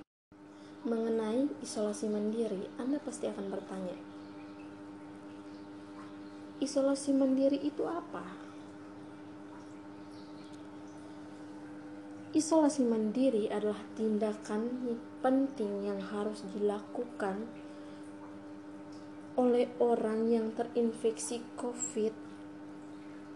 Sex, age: female, 20-39